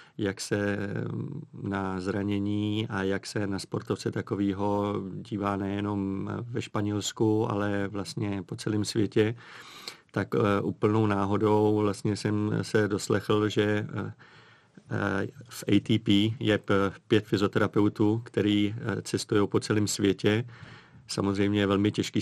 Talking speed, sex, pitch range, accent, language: 110 wpm, male, 100-110 Hz, native, Czech